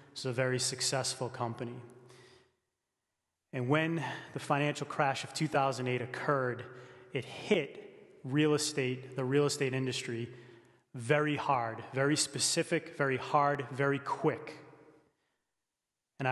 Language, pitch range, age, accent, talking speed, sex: English, 125-140 Hz, 30-49, American, 110 wpm, male